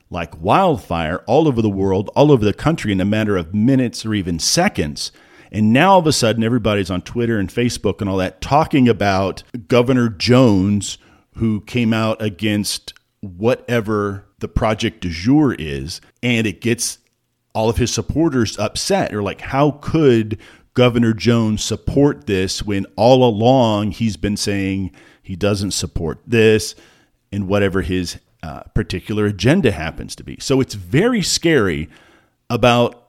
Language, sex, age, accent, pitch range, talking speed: English, male, 50-69, American, 95-120 Hz, 155 wpm